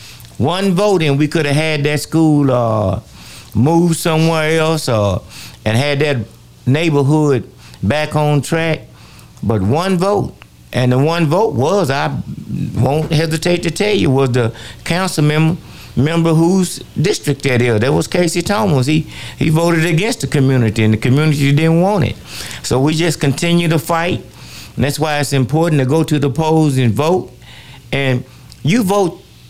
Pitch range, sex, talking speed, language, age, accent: 120-160 Hz, male, 165 wpm, English, 60-79, American